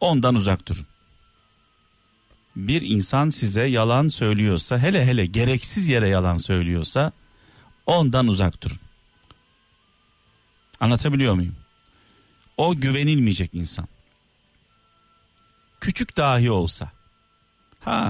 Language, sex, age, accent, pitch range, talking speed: Turkish, male, 50-69, native, 100-140 Hz, 85 wpm